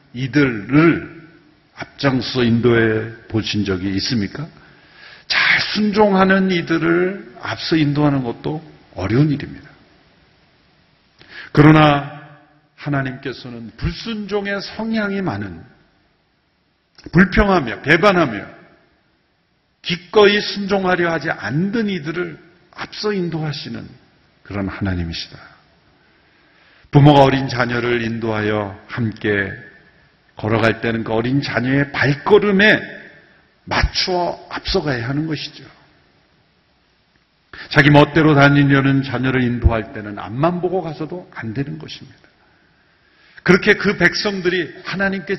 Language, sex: Korean, male